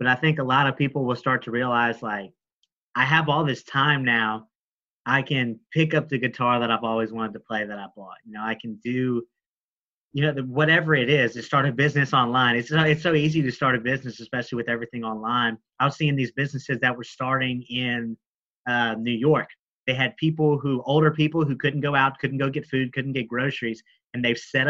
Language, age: English, 30-49